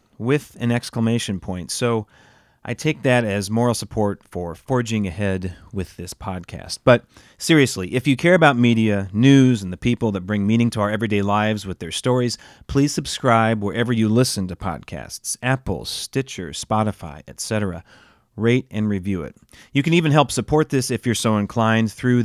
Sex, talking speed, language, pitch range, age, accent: male, 175 wpm, English, 100-130 Hz, 40-59, American